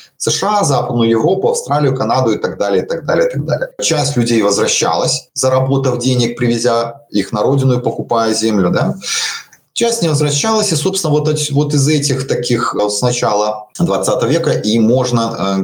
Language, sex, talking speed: Russian, male, 175 wpm